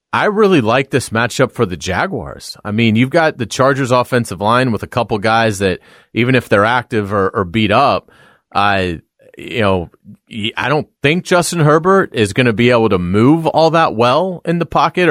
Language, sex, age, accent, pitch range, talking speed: English, male, 30-49, American, 105-135 Hz, 200 wpm